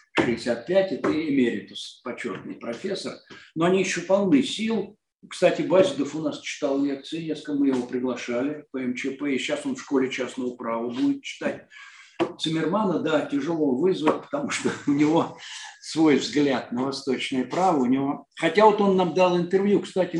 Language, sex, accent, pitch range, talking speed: Russian, male, native, 145-200 Hz, 155 wpm